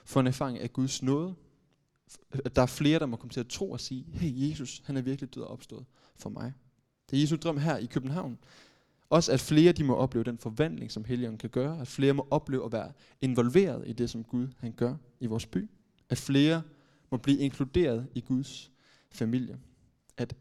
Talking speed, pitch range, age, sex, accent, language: 215 wpm, 120-145 Hz, 20-39, male, native, Danish